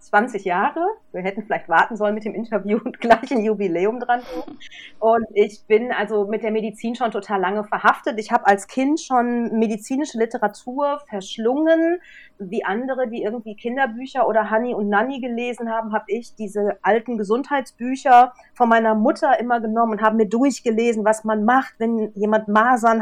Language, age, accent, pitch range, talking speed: German, 40-59, German, 205-245 Hz, 170 wpm